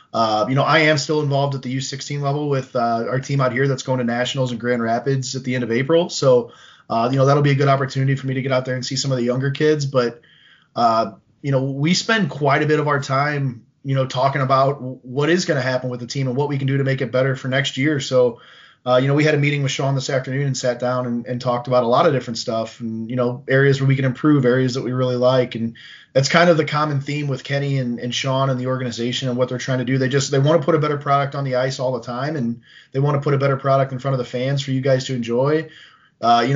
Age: 20-39